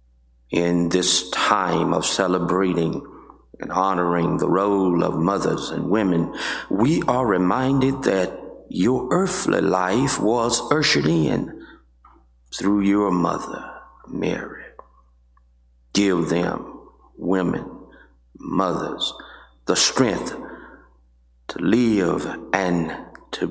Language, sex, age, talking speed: English, male, 50-69, 95 wpm